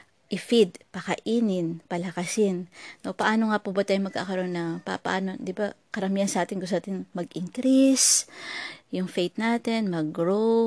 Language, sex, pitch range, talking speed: Filipino, female, 175-225 Hz, 140 wpm